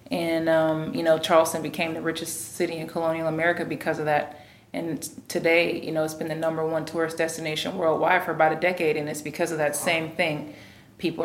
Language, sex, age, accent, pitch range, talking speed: English, female, 30-49, American, 155-170 Hz, 210 wpm